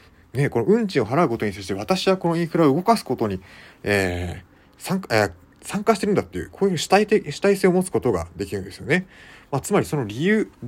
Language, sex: Japanese, male